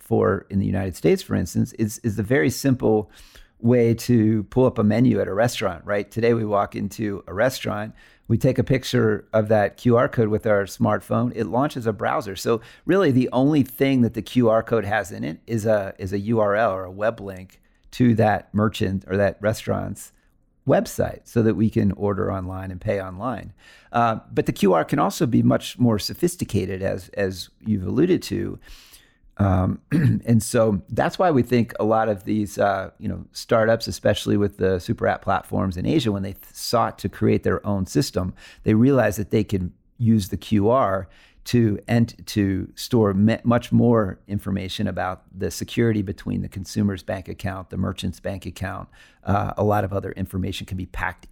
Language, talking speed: English, 190 wpm